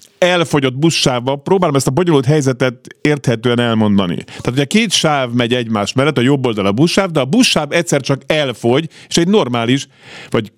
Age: 50-69